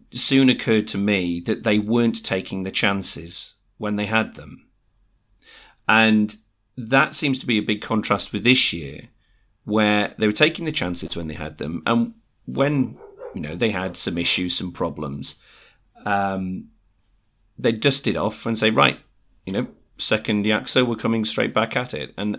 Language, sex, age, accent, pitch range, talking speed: English, male, 40-59, British, 100-120 Hz, 170 wpm